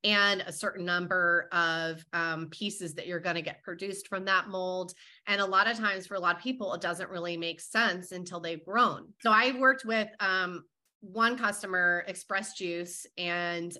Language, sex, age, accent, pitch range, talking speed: English, female, 30-49, American, 185-245 Hz, 190 wpm